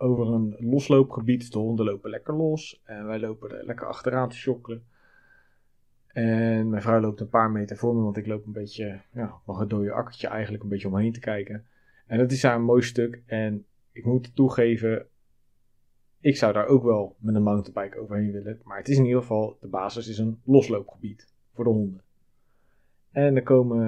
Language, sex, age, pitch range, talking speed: Dutch, male, 30-49, 105-125 Hz, 200 wpm